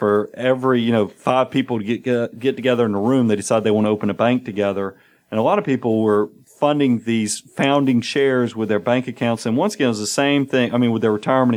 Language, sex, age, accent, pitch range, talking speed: English, male, 40-59, American, 105-130 Hz, 255 wpm